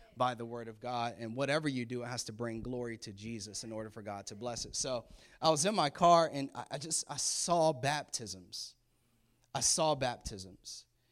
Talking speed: 205 wpm